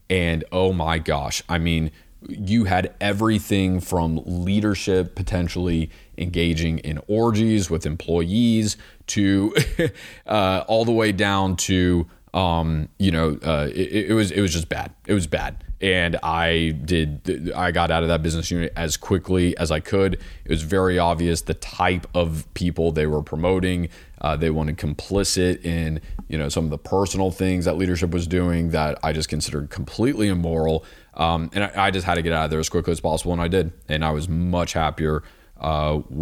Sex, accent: male, American